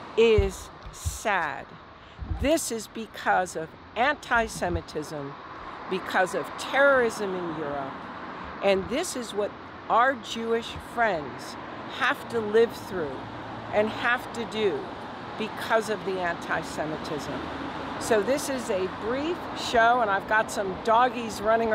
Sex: female